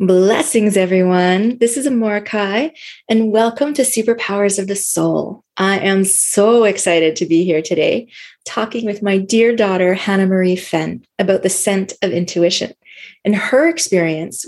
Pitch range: 185-235 Hz